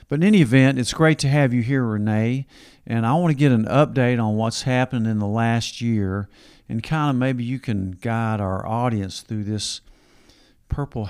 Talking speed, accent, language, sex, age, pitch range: 200 wpm, American, English, male, 50-69, 105-130 Hz